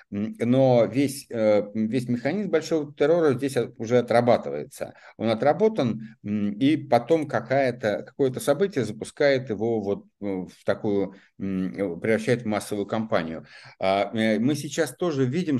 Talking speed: 110 wpm